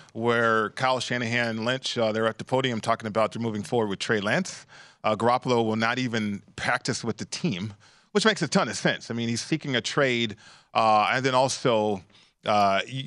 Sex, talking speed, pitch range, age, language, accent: male, 205 wpm, 115-150 Hz, 40-59, English, American